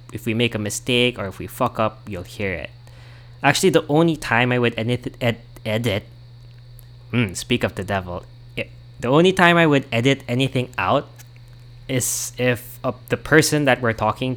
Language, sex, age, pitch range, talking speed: English, male, 20-39, 110-125 Hz, 180 wpm